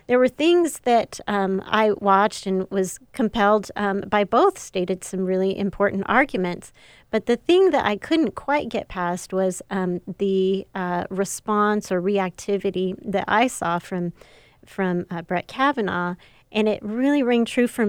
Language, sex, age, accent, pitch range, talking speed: English, female, 30-49, American, 180-215 Hz, 160 wpm